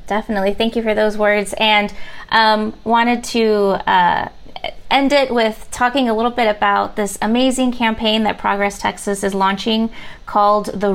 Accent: American